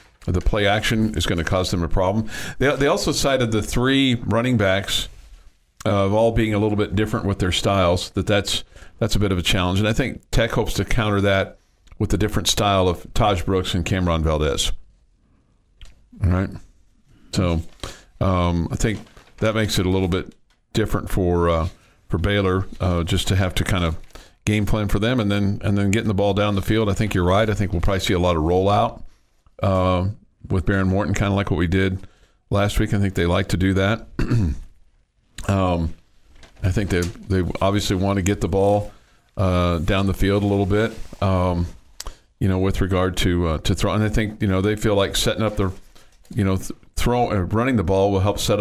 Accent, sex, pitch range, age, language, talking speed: American, male, 90-105 Hz, 50-69, English, 215 wpm